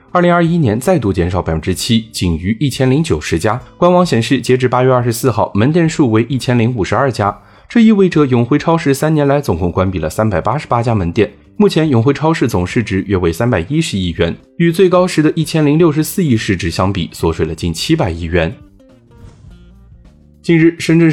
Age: 20-39